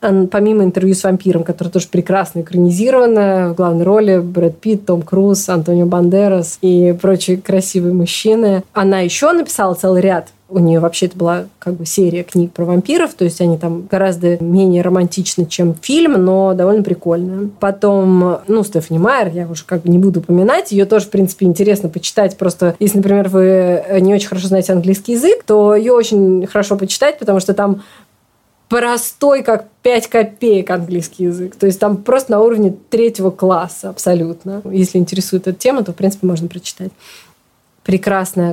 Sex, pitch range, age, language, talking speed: female, 175-200 Hz, 20-39, Russian, 170 wpm